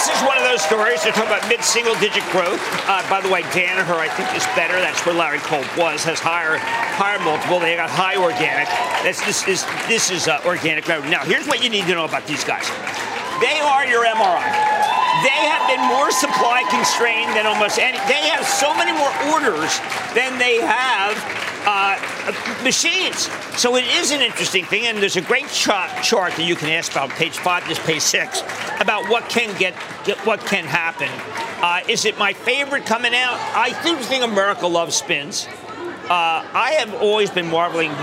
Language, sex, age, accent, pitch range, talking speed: English, male, 50-69, American, 165-235 Hz, 195 wpm